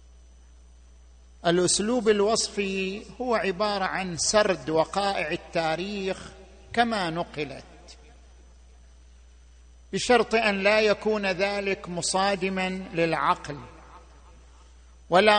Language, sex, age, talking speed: Arabic, male, 50-69, 70 wpm